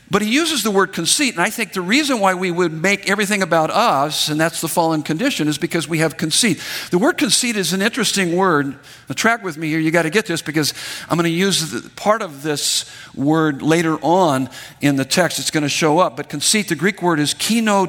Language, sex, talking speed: English, male, 235 wpm